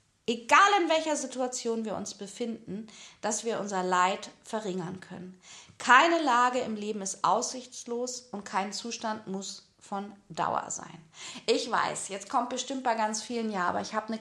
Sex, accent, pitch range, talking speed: female, German, 200-250 Hz, 165 wpm